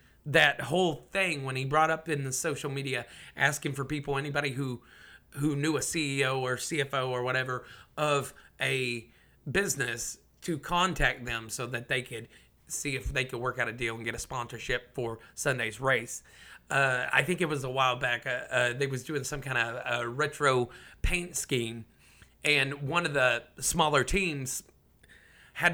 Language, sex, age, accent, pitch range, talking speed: English, male, 30-49, American, 125-155 Hz, 175 wpm